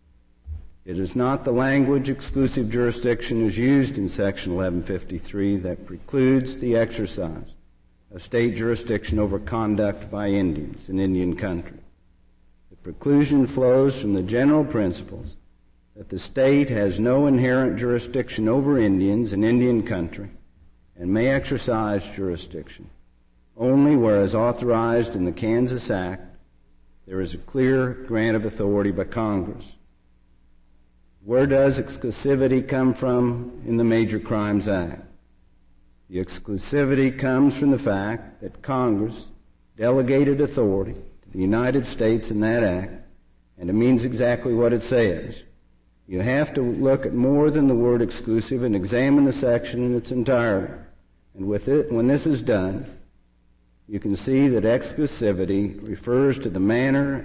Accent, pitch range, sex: American, 95-125 Hz, male